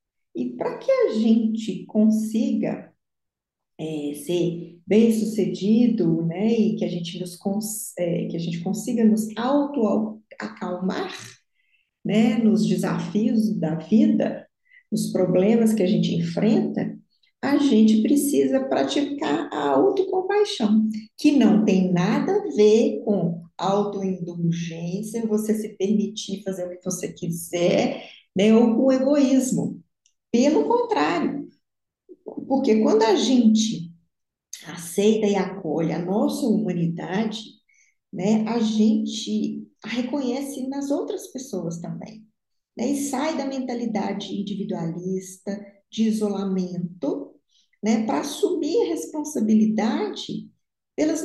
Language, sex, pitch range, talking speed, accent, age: Portuguese, female, 190-265 Hz, 110 wpm, Brazilian, 50-69